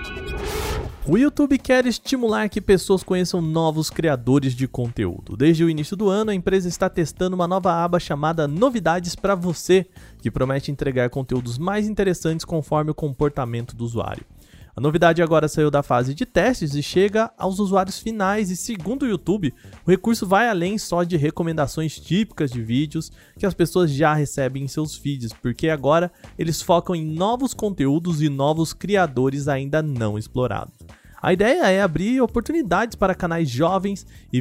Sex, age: male, 20-39